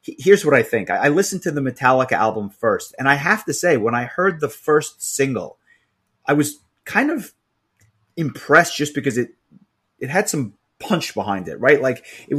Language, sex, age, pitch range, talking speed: English, male, 30-49, 115-155 Hz, 190 wpm